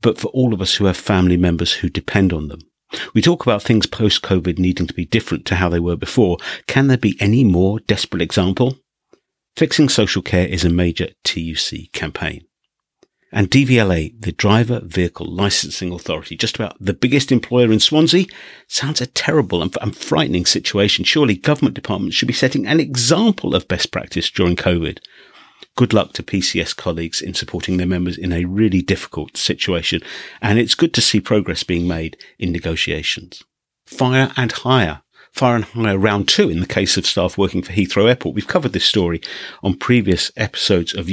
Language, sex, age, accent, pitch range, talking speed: English, male, 50-69, British, 90-115 Hz, 180 wpm